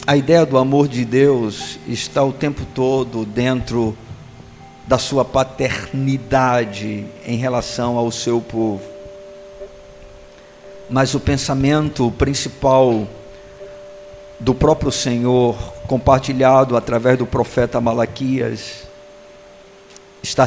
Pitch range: 110-135 Hz